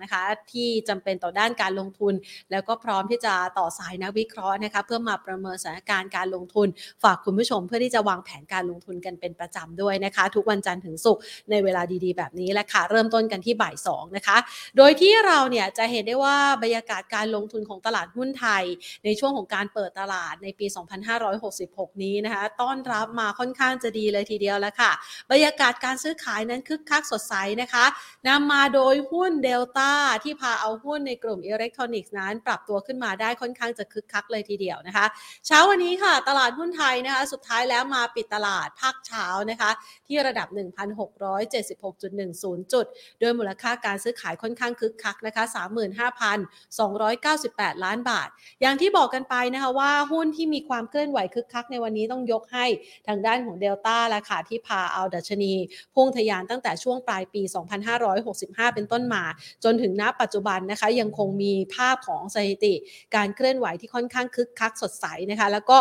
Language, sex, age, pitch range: Thai, female, 30-49, 200-250 Hz